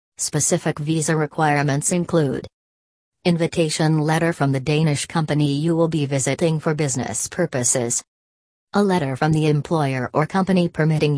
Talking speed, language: 135 wpm, English